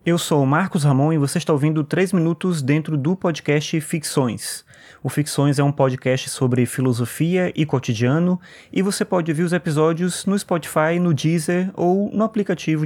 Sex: male